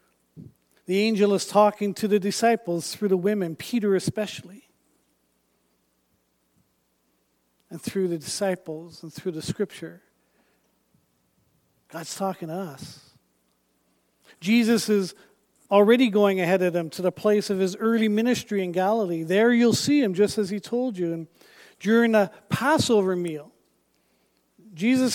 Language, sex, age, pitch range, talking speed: English, male, 50-69, 170-225 Hz, 130 wpm